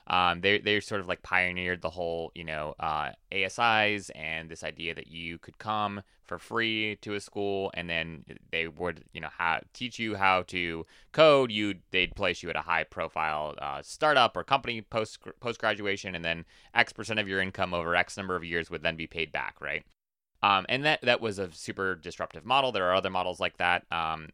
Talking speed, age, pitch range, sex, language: 210 wpm, 30-49, 90-110 Hz, male, English